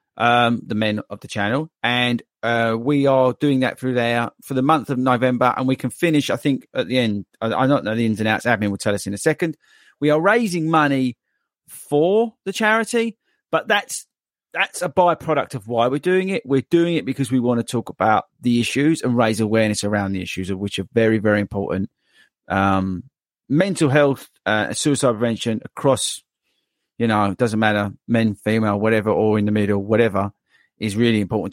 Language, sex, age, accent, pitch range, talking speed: English, male, 40-59, British, 110-140 Hz, 200 wpm